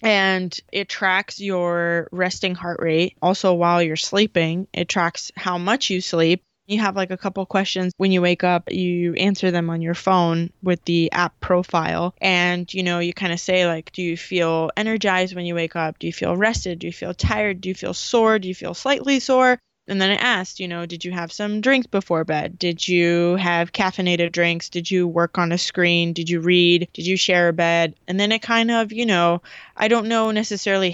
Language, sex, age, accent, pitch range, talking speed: English, female, 20-39, American, 170-190 Hz, 220 wpm